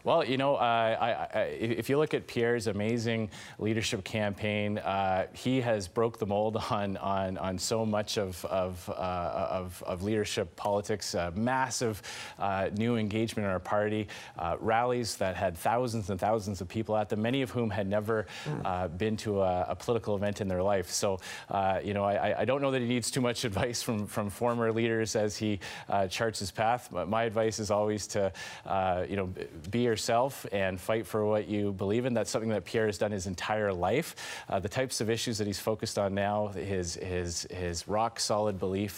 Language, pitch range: English, 95-115 Hz